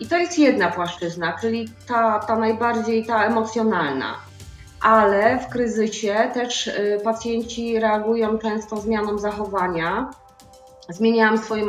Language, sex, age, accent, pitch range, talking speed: Polish, female, 30-49, native, 200-230 Hz, 115 wpm